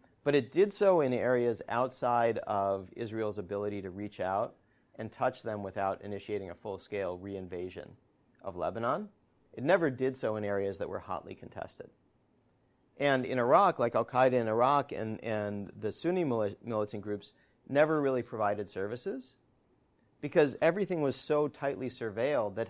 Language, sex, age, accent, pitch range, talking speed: English, male, 40-59, American, 100-130 Hz, 150 wpm